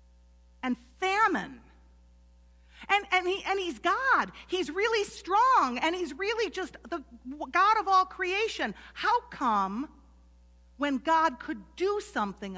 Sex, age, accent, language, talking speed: female, 50-69, American, English, 130 wpm